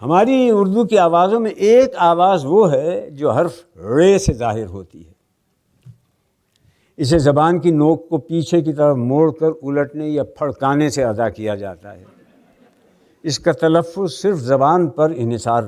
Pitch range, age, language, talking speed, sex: 125-180 Hz, 60-79, Hindi, 155 wpm, male